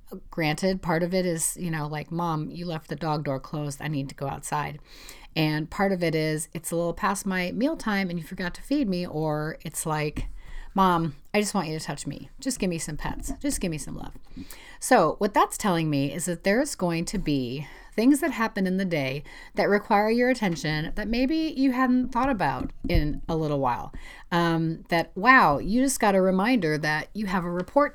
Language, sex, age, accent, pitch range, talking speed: English, female, 30-49, American, 155-205 Hz, 220 wpm